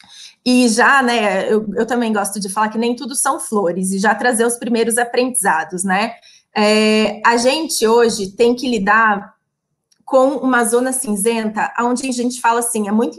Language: Portuguese